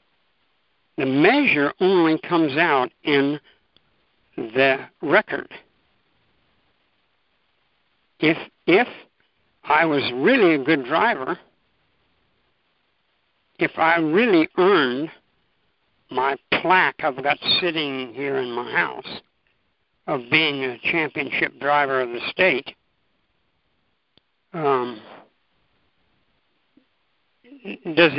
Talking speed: 85 wpm